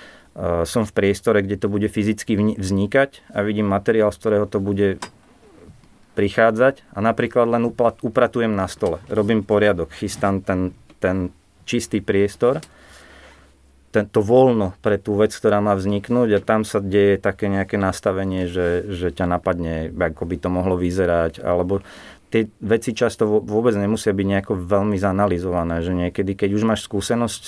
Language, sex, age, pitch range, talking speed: Slovak, male, 30-49, 95-110 Hz, 150 wpm